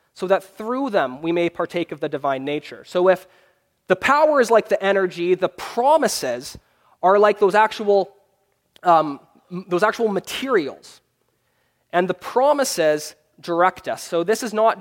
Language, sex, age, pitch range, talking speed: English, male, 20-39, 165-215 Hz, 145 wpm